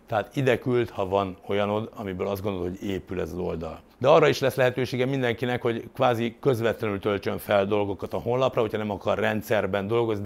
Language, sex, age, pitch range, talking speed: Hungarian, male, 60-79, 95-120 Hz, 195 wpm